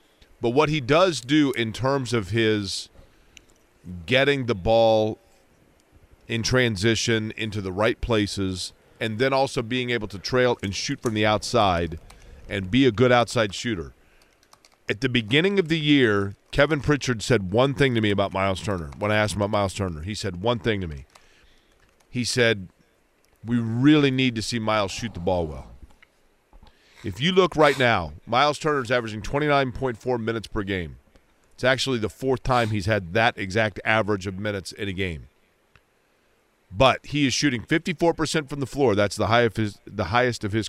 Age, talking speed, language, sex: 40-59, 185 wpm, English, male